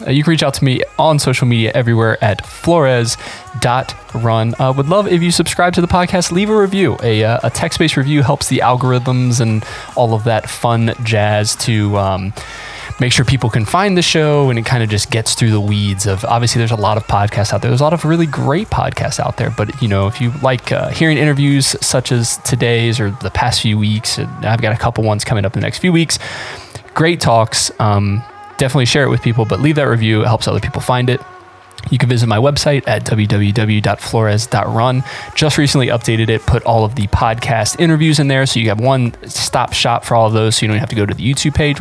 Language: English